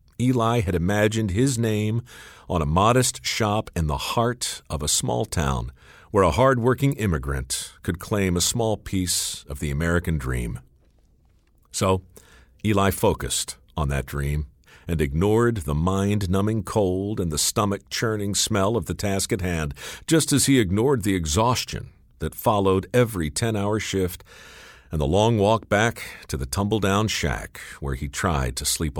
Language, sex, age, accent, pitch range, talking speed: English, male, 50-69, American, 80-115 Hz, 155 wpm